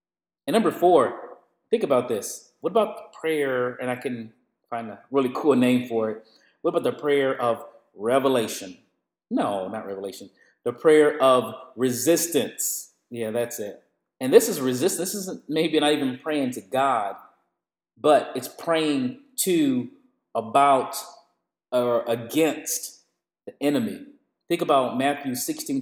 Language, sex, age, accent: English, male, 30-49, American